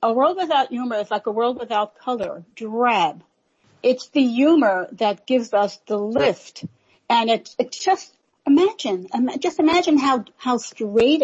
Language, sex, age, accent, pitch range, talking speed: English, female, 50-69, American, 205-280 Hz, 150 wpm